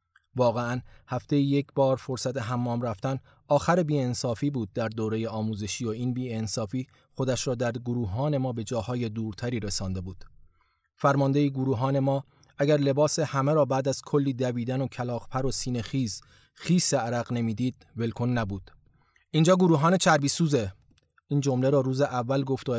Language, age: Persian, 30-49